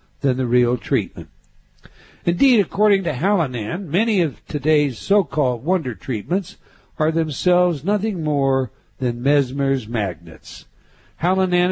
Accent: American